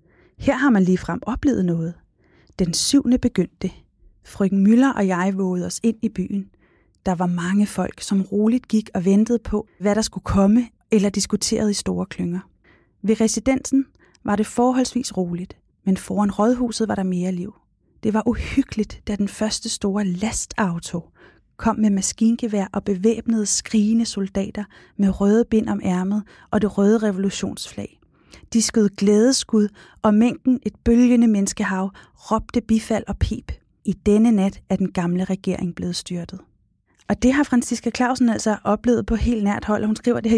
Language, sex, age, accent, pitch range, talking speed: Danish, female, 30-49, native, 190-225 Hz, 165 wpm